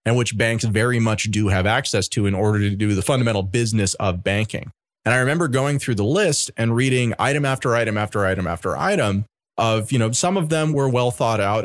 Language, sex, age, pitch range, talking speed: English, male, 30-49, 110-150 Hz, 225 wpm